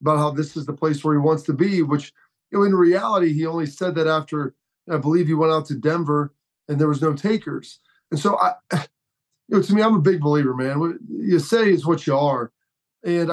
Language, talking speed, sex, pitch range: English, 240 wpm, male, 155-185 Hz